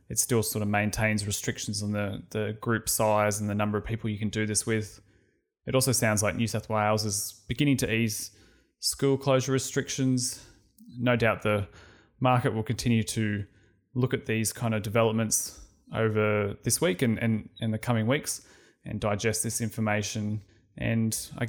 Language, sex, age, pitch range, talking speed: English, male, 20-39, 105-120 Hz, 180 wpm